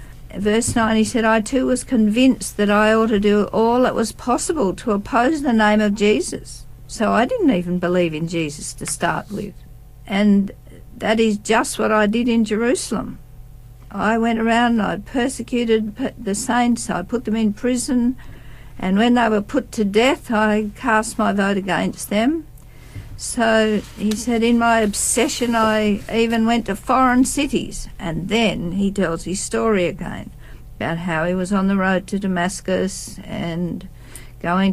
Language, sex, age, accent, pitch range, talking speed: English, female, 60-79, Australian, 190-225 Hz, 170 wpm